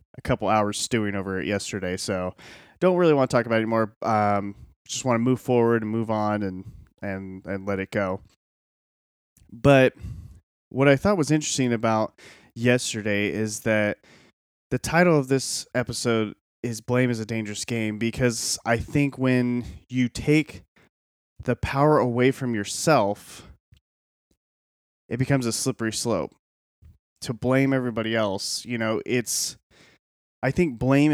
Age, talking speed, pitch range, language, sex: 30-49, 150 wpm, 100-125 Hz, English, male